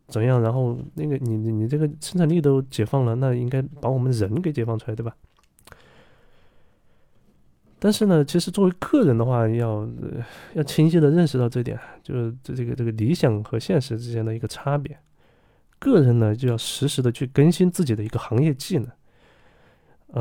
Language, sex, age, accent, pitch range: Chinese, male, 20-39, native, 115-150 Hz